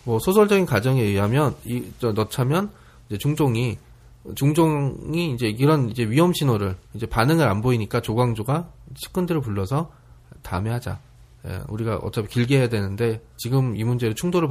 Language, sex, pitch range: Korean, male, 115-160 Hz